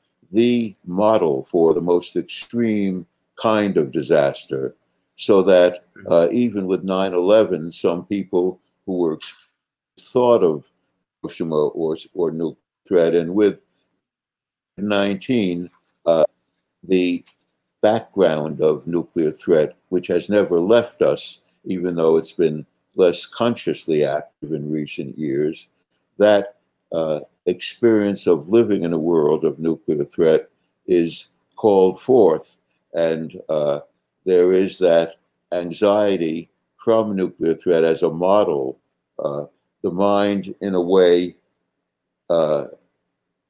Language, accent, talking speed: English, American, 115 wpm